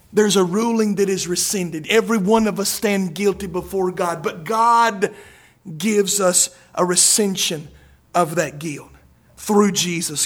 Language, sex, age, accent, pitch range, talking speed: English, male, 50-69, American, 195-260 Hz, 145 wpm